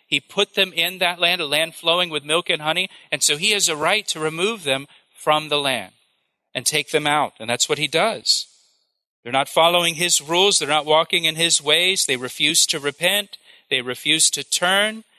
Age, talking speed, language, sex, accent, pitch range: 40-59, 210 wpm, English, male, American, 140-175 Hz